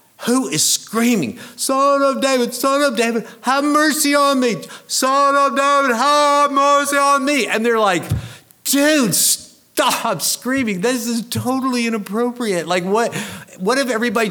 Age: 50-69